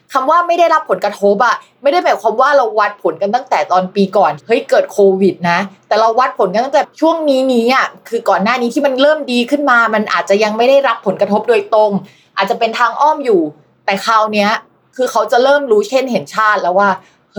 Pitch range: 195-245 Hz